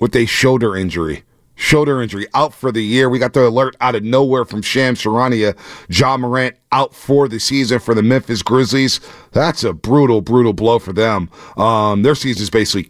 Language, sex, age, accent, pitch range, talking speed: English, male, 40-59, American, 115-145 Hz, 195 wpm